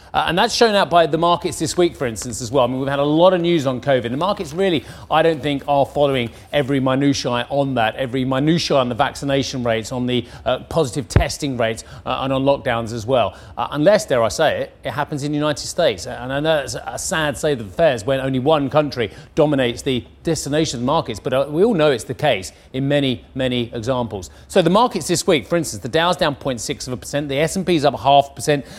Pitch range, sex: 130-170 Hz, male